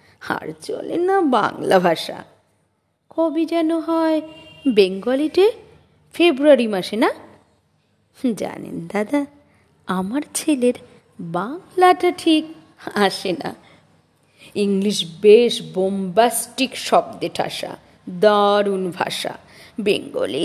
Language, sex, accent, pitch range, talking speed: Bengali, female, native, 205-325 Hz, 80 wpm